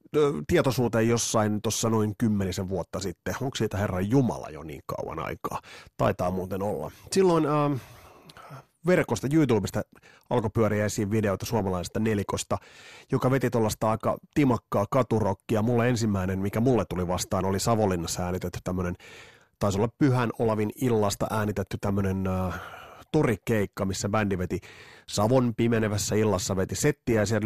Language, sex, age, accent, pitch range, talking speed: Finnish, male, 30-49, native, 100-130 Hz, 135 wpm